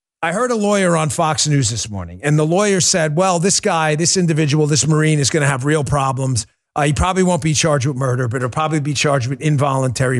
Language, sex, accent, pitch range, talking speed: English, male, American, 140-180 Hz, 240 wpm